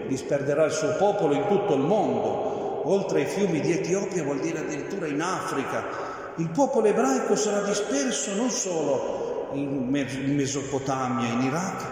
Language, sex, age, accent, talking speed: Italian, male, 50-69, native, 145 wpm